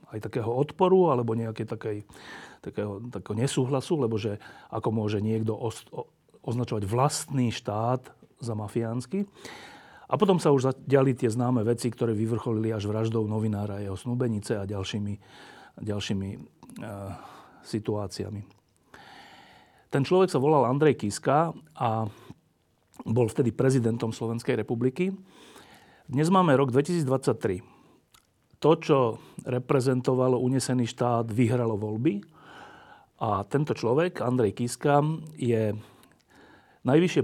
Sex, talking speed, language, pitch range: male, 115 wpm, Slovak, 110-140 Hz